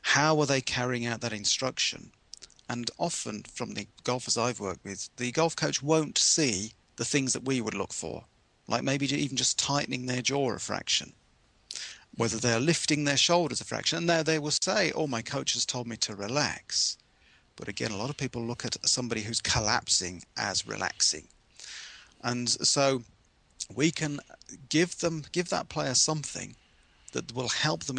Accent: British